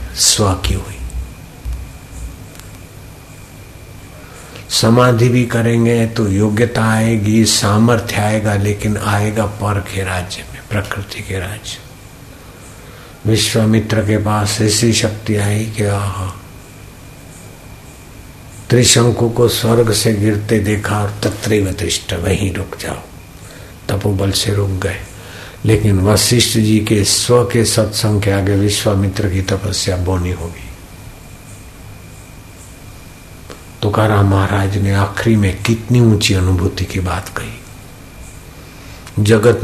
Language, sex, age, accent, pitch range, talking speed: Hindi, male, 60-79, native, 100-115 Hz, 100 wpm